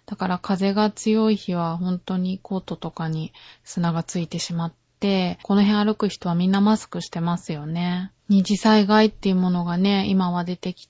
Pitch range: 170-205 Hz